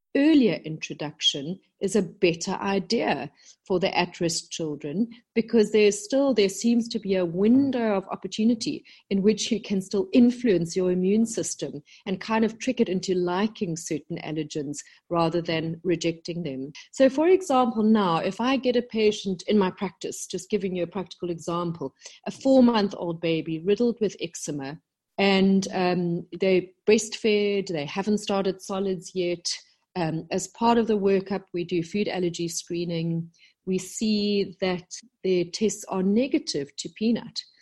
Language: English